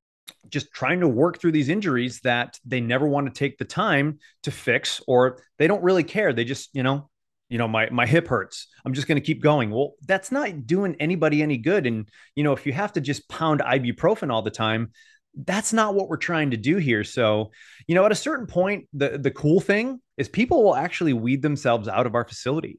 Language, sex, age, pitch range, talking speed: English, male, 30-49, 115-150 Hz, 230 wpm